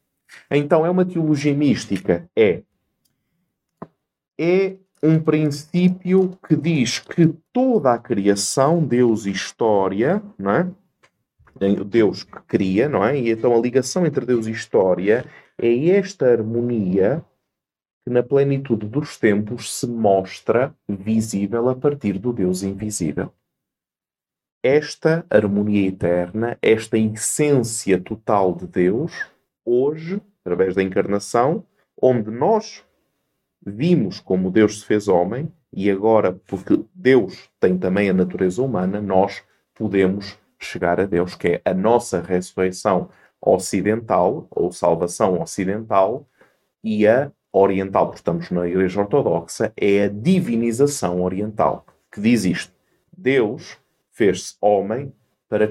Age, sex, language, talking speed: 30-49, male, Portuguese, 120 wpm